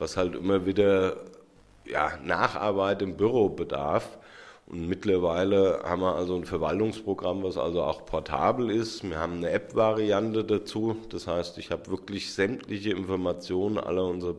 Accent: German